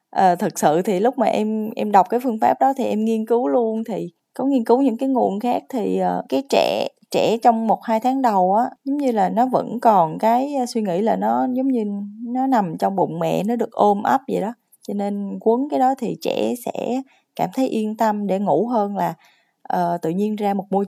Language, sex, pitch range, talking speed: Vietnamese, female, 200-255 Hz, 240 wpm